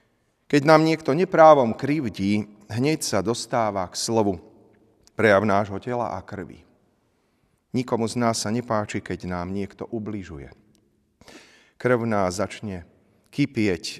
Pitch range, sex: 100-125 Hz, male